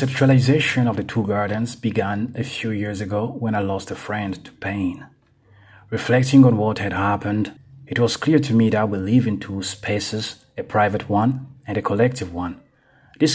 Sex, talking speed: male, 190 wpm